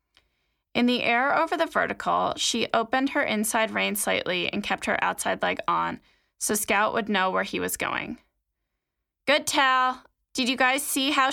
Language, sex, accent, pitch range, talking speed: English, female, American, 195-255 Hz, 175 wpm